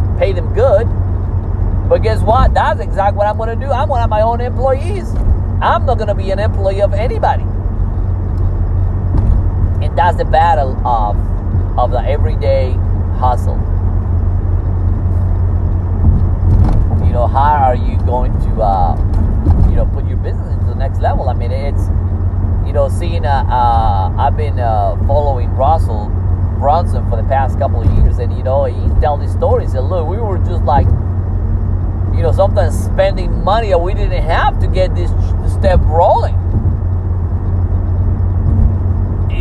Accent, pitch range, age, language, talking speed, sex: American, 90-95 Hz, 30-49, English, 155 wpm, male